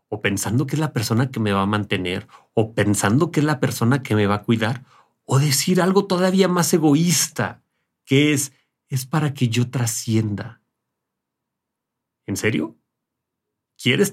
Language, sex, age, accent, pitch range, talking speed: Spanish, male, 40-59, Mexican, 105-135 Hz, 160 wpm